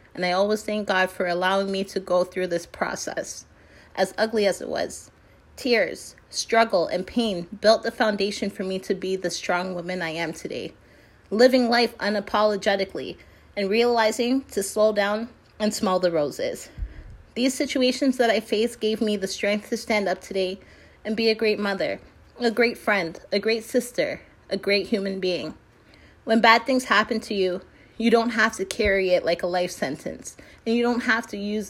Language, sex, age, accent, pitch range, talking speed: English, female, 30-49, American, 195-230 Hz, 185 wpm